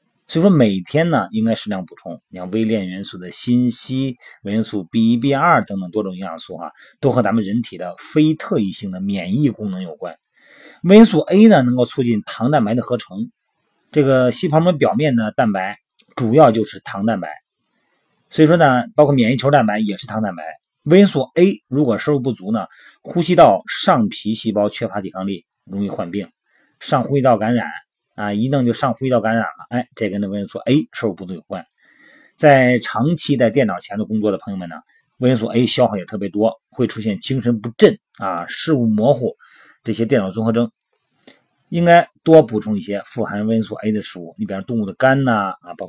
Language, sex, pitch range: Chinese, male, 105-135 Hz